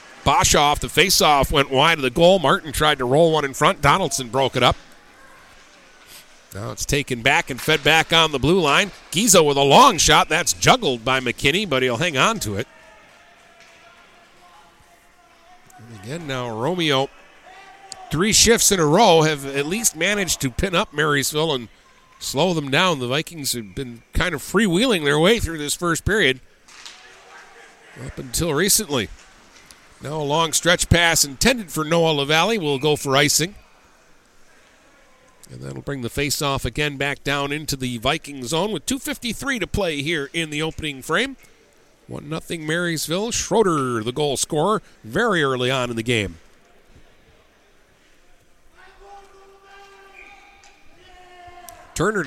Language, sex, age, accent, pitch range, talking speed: English, male, 50-69, American, 140-195 Hz, 150 wpm